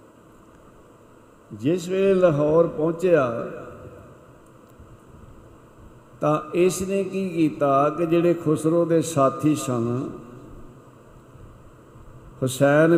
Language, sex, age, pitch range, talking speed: Punjabi, male, 60-79, 140-175 Hz, 75 wpm